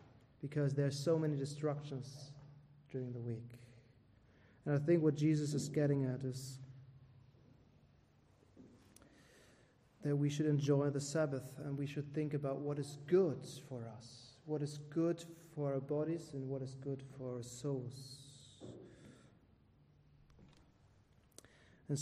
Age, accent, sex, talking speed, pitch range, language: 30-49, German, male, 130 wpm, 140-185 Hz, English